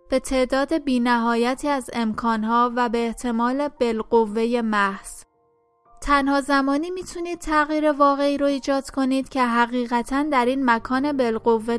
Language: Persian